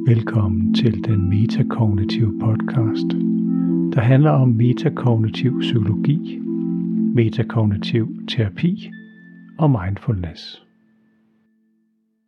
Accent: native